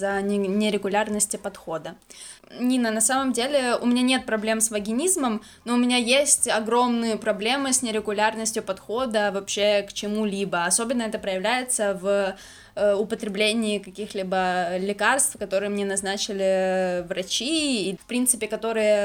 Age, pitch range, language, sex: 10-29, 200-230 Hz, Ukrainian, female